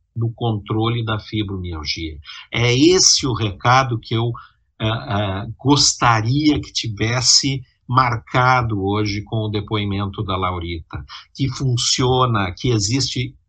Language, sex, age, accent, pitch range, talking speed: Portuguese, male, 50-69, Brazilian, 110-140 Hz, 115 wpm